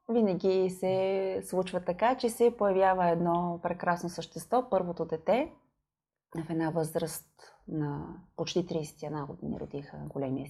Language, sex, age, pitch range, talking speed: Bulgarian, female, 30-49, 165-235 Hz, 120 wpm